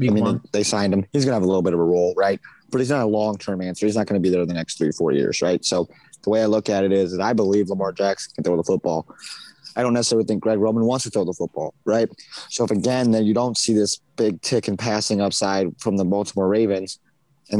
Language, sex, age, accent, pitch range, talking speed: English, male, 20-39, American, 105-120 Hz, 280 wpm